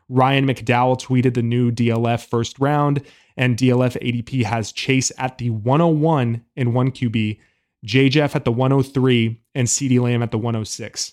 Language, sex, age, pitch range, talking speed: English, male, 20-39, 115-135 Hz, 160 wpm